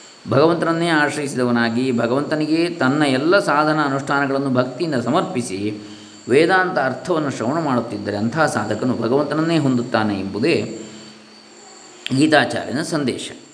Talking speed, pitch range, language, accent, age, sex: 90 wpm, 110-125 Hz, Kannada, native, 20-39, male